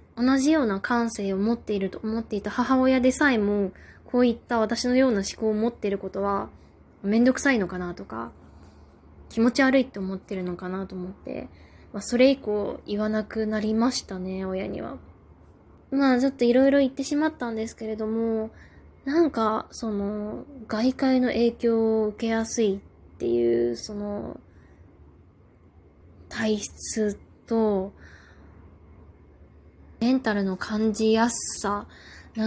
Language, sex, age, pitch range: Japanese, female, 20-39, 195-235 Hz